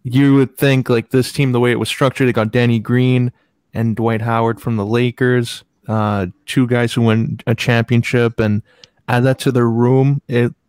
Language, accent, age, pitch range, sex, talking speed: English, American, 20-39, 115-125 Hz, male, 195 wpm